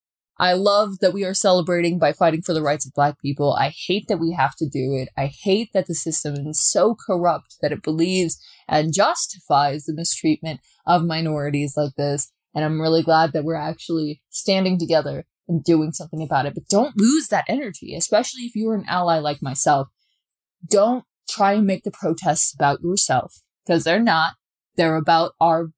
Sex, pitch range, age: female, 155-210 Hz, 20-39